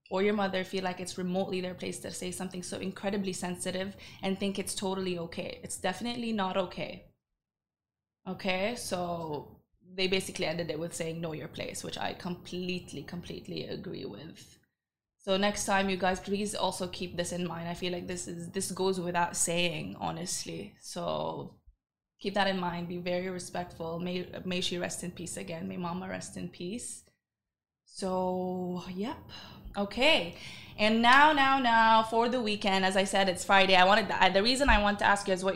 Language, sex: Arabic, female